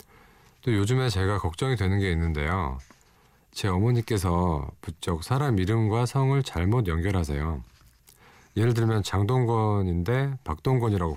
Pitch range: 80-115 Hz